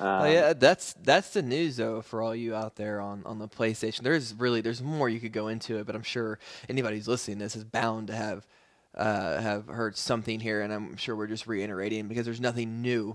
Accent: American